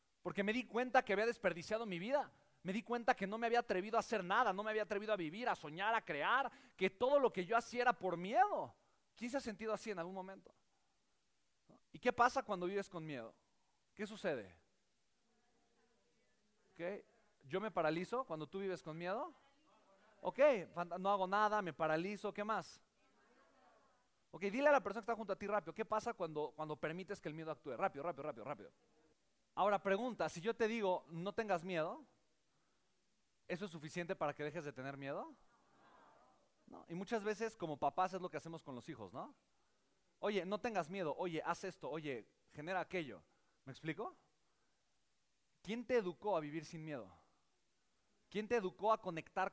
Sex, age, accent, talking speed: male, 40-59, Mexican, 185 wpm